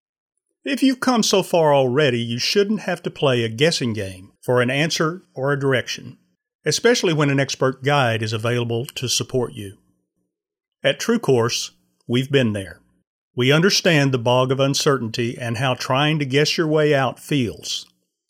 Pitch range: 120-155 Hz